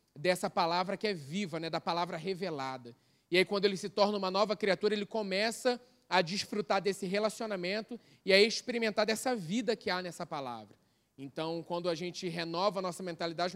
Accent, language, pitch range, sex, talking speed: Brazilian, Portuguese, 165-200 Hz, male, 180 wpm